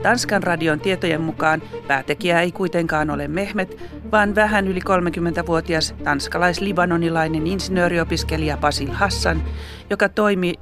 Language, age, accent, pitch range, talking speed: Finnish, 40-59, native, 145-190 Hz, 115 wpm